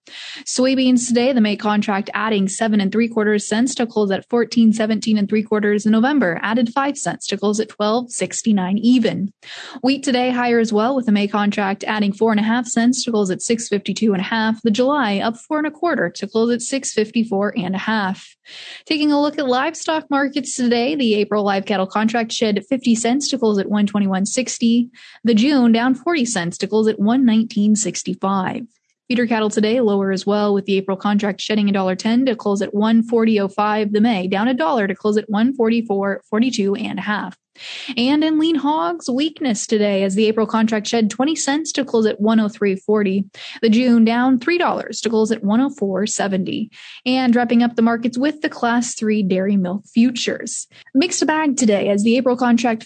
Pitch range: 210-250 Hz